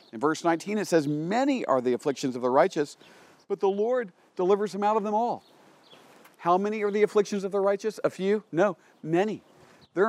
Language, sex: English, male